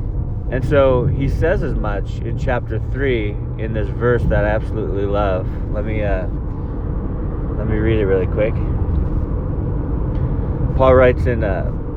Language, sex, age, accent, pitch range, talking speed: English, male, 30-49, American, 85-115 Hz, 145 wpm